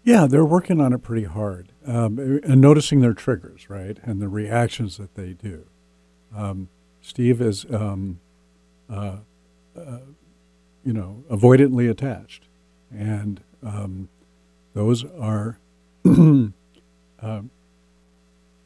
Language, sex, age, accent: English, male, 50-69, American